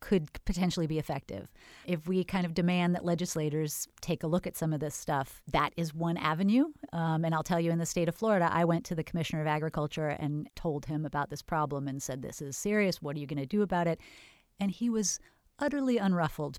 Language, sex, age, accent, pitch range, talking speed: English, female, 30-49, American, 150-185 Hz, 230 wpm